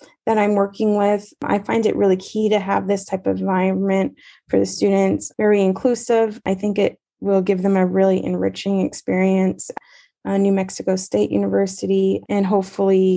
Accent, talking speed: American, 170 wpm